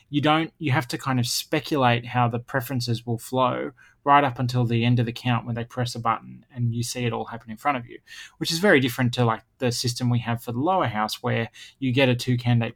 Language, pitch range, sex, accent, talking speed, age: English, 120-140 Hz, male, Australian, 260 wpm, 20-39